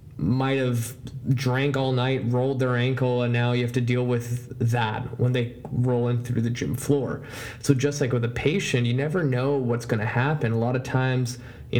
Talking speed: 215 wpm